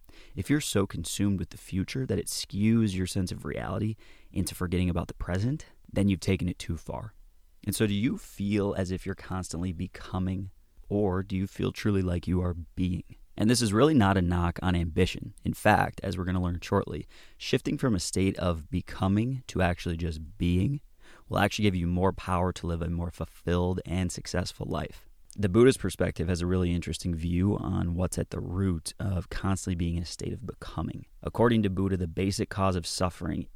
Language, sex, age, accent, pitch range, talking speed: English, male, 30-49, American, 85-100 Hz, 205 wpm